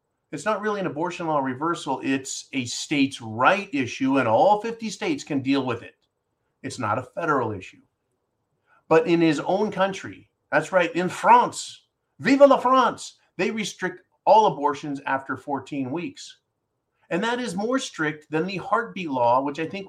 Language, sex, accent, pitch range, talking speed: English, male, American, 140-190 Hz, 170 wpm